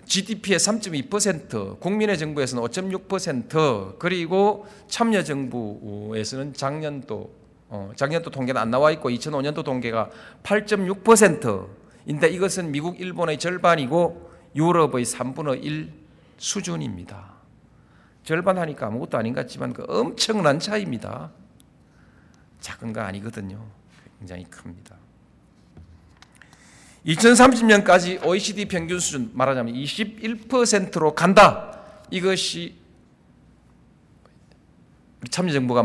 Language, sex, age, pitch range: Korean, male, 40-59, 125-195 Hz